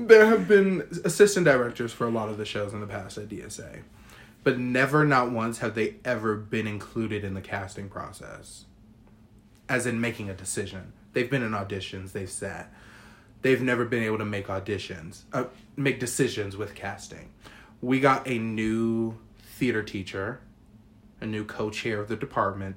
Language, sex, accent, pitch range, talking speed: English, male, American, 100-120 Hz, 170 wpm